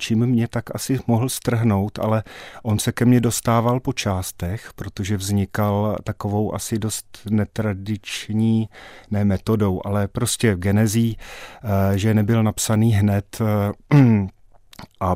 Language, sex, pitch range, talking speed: Czech, male, 100-115 Hz, 125 wpm